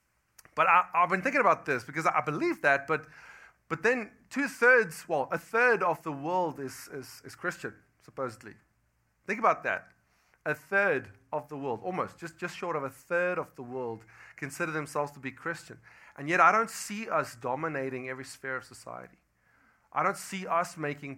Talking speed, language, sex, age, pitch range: 185 wpm, English, male, 30-49, 130-165 Hz